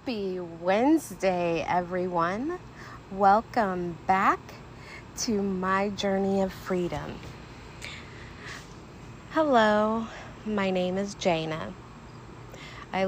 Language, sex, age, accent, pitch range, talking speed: English, female, 30-49, American, 180-210 Hz, 75 wpm